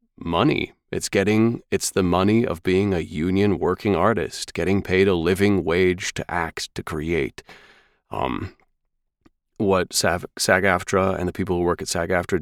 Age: 30-49